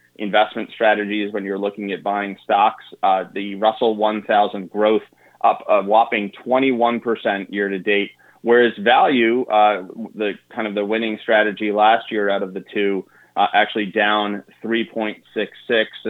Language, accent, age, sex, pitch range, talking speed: English, American, 20-39, male, 100-115 Hz, 150 wpm